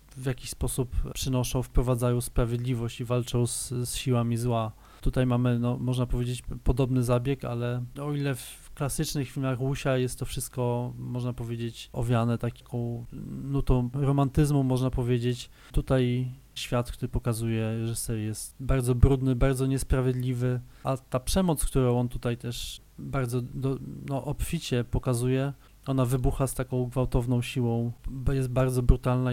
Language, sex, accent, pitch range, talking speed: Polish, male, native, 120-130 Hz, 135 wpm